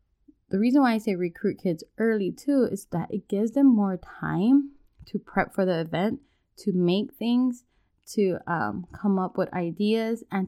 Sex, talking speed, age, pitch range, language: female, 180 wpm, 20-39, 175-210 Hz, English